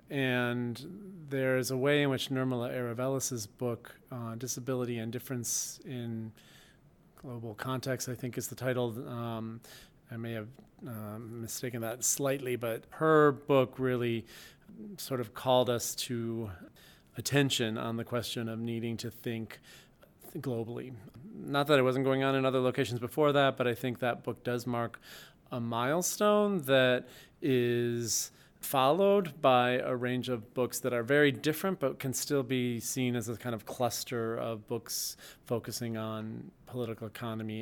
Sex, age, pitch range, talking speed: male, 40-59, 115-130 Hz, 155 wpm